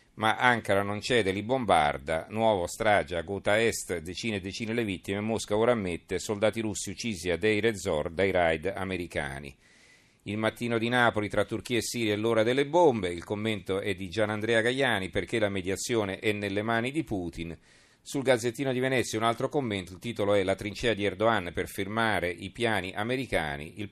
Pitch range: 95-120 Hz